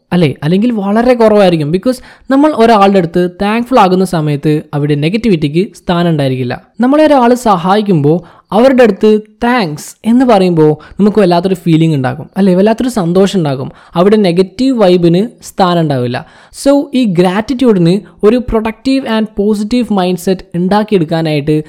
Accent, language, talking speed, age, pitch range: native, Malayalam, 120 wpm, 20-39, 165-225 Hz